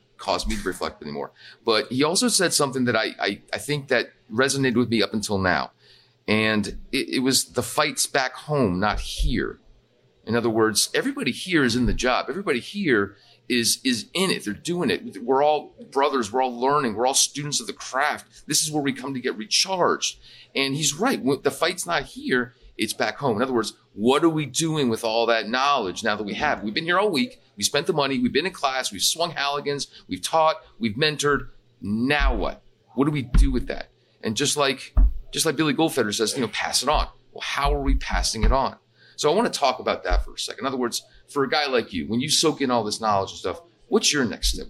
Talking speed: 235 wpm